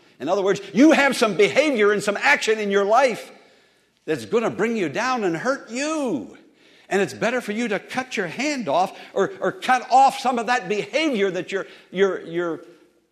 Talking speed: 195 wpm